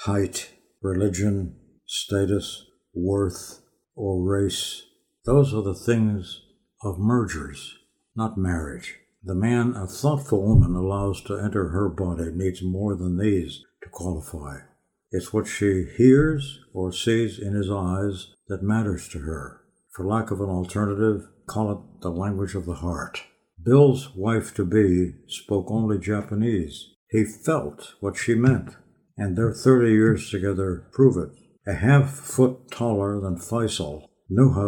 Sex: male